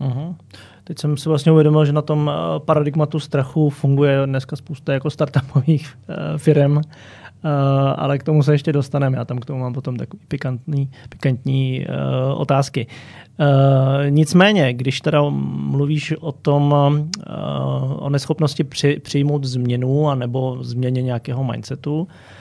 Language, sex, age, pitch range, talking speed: Slovak, male, 30-49, 135-150 Hz, 125 wpm